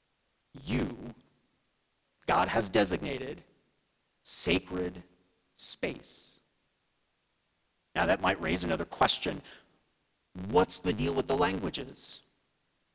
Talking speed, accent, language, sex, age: 85 wpm, American, English, male, 40-59